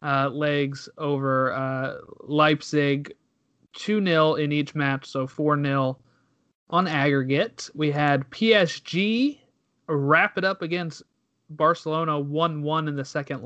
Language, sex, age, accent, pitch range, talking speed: English, male, 30-49, American, 135-170 Hz, 110 wpm